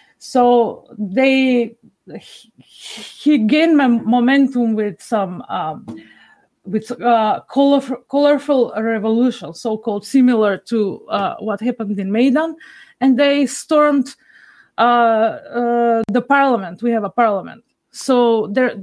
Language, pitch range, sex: English, 225-265 Hz, female